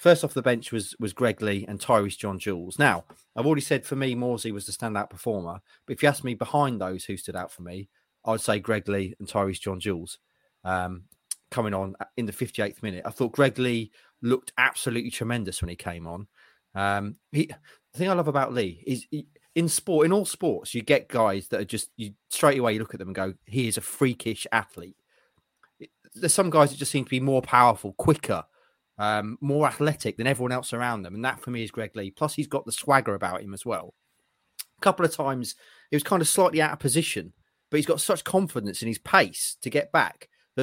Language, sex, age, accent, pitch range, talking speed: English, male, 30-49, British, 100-140 Hz, 220 wpm